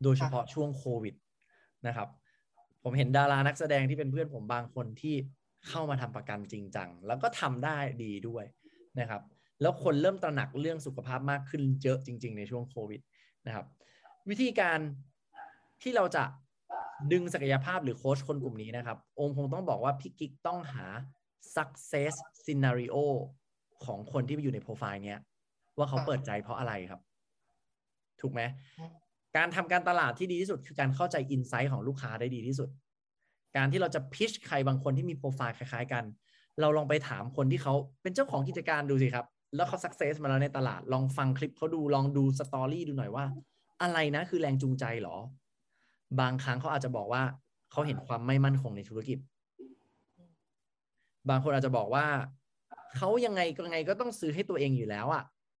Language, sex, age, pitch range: English, male, 20-39, 125-150 Hz